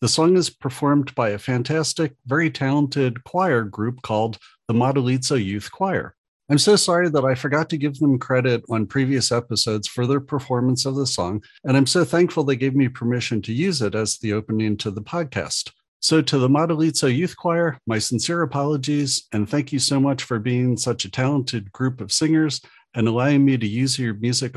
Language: English